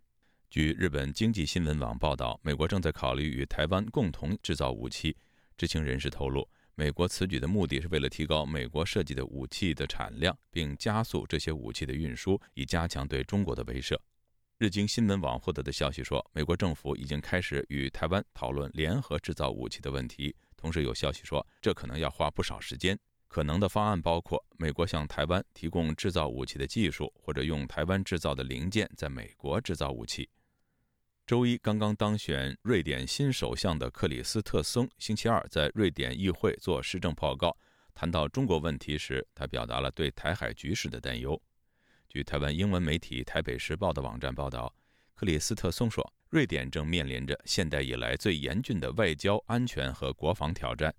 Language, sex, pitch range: Chinese, male, 70-90 Hz